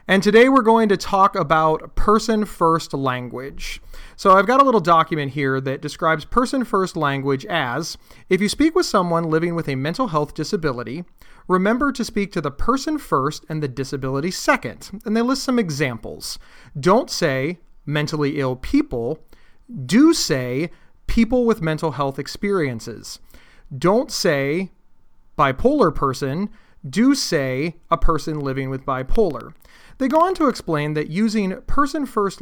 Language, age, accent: English, 30-49, American